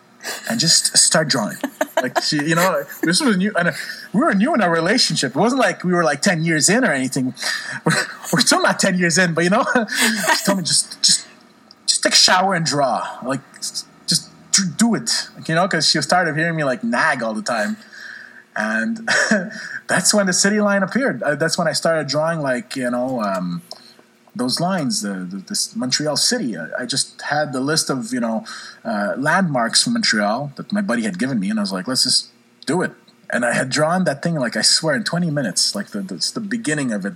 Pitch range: 155-220 Hz